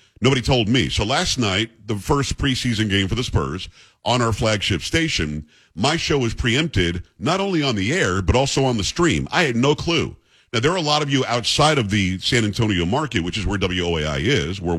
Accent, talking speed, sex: American, 220 wpm, male